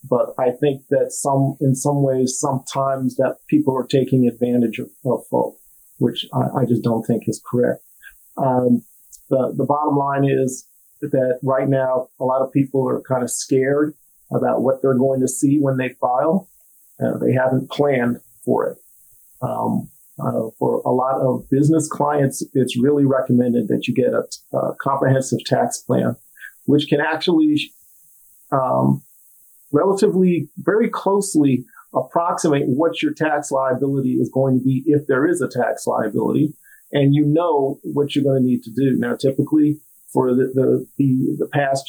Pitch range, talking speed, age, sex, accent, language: 130-150 Hz, 165 wpm, 40-59, male, American, English